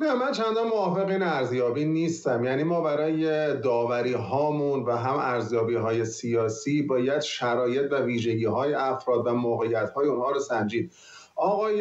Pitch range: 125-170 Hz